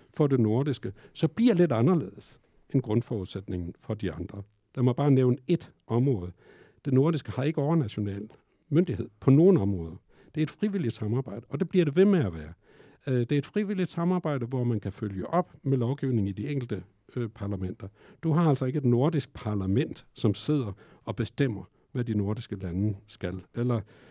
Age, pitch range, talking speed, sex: 60-79, 105-150 Hz, 185 wpm, male